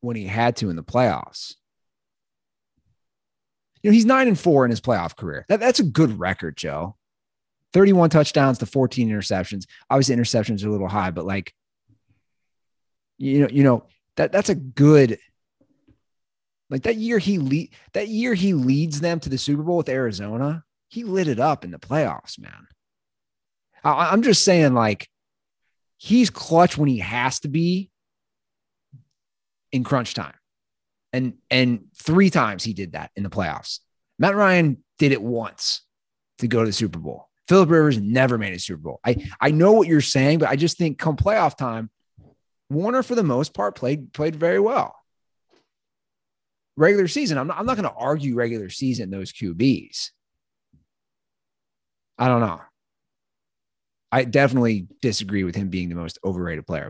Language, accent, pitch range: English, American, 105-160 Hz